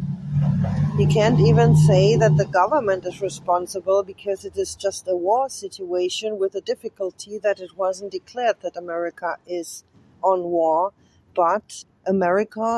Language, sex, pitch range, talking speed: English, female, 180-215 Hz, 140 wpm